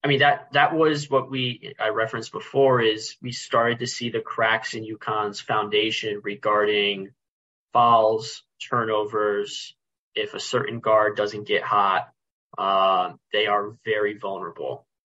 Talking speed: 145 wpm